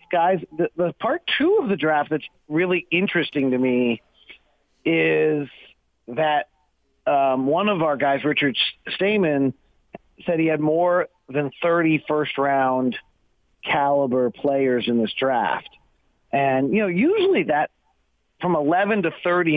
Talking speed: 130 wpm